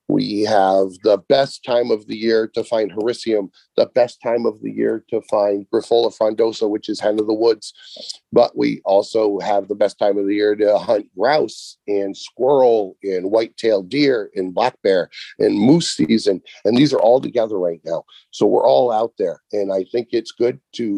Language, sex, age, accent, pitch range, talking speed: English, male, 40-59, American, 105-140 Hz, 195 wpm